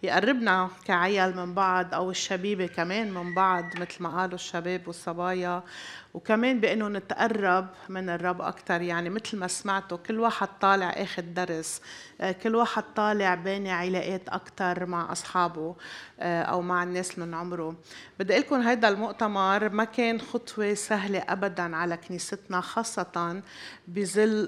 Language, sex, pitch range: Arabic, female, 175-205 Hz